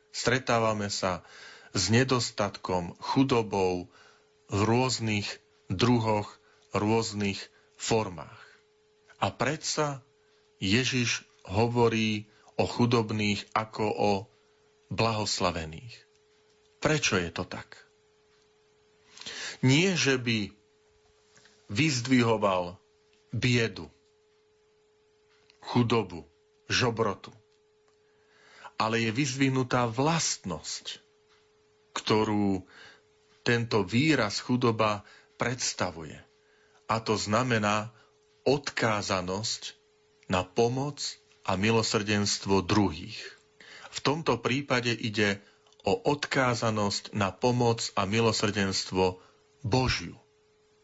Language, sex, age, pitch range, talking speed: Slovak, male, 40-59, 105-140 Hz, 70 wpm